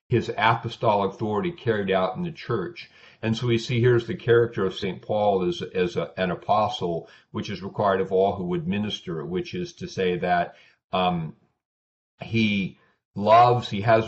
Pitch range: 95-115 Hz